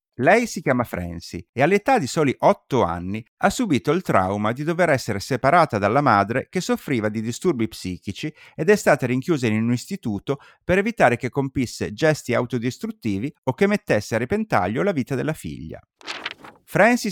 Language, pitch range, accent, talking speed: Italian, 110-180 Hz, native, 170 wpm